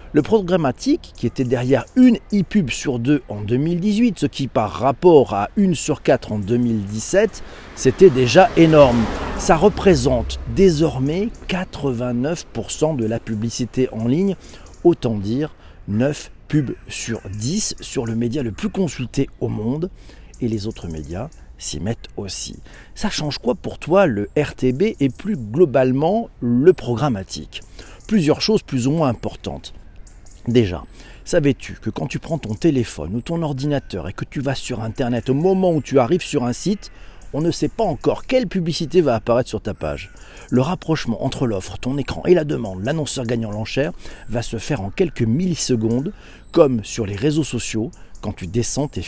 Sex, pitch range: male, 110-155 Hz